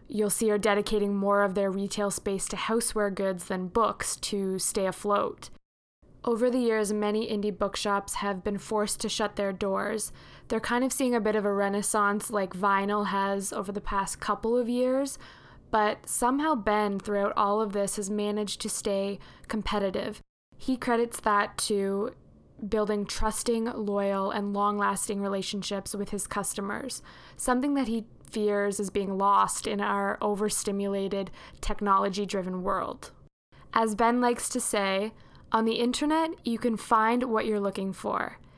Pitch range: 200-225 Hz